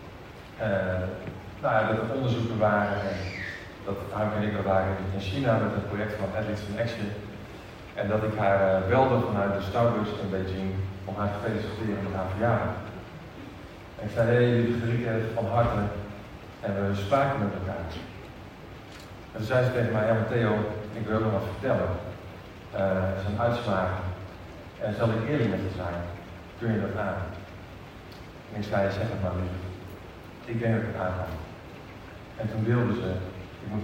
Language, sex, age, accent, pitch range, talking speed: Dutch, male, 40-59, Dutch, 95-115 Hz, 175 wpm